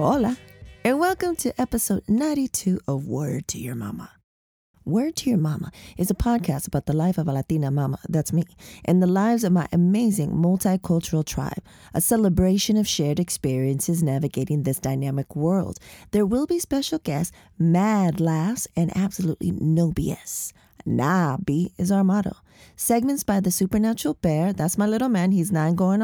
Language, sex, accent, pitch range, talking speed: English, female, American, 150-215 Hz, 165 wpm